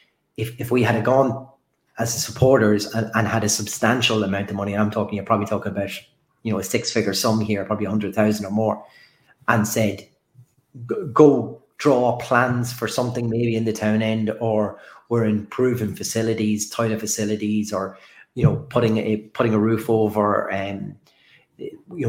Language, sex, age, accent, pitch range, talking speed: English, male, 30-49, Irish, 105-125 Hz, 175 wpm